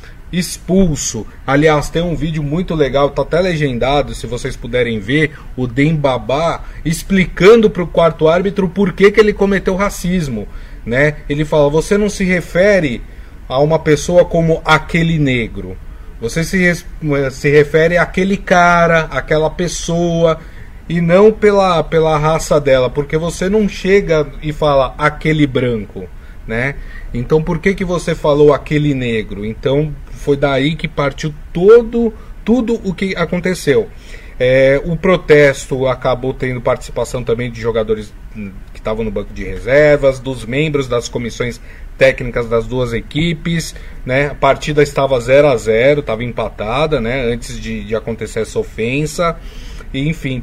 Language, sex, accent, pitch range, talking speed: Portuguese, male, Brazilian, 125-165 Hz, 145 wpm